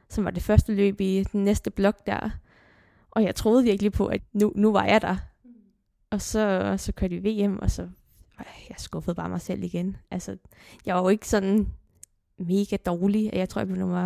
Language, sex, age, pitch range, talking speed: English, female, 20-39, 185-210 Hz, 225 wpm